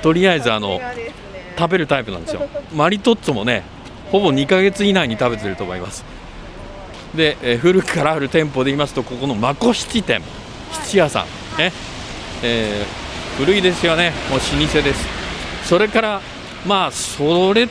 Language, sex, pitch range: Japanese, male, 115-175 Hz